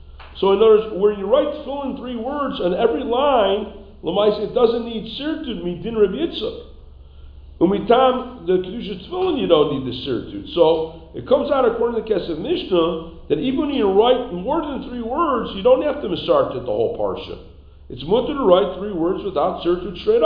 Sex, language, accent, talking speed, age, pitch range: male, English, American, 200 wpm, 50-69, 170-275 Hz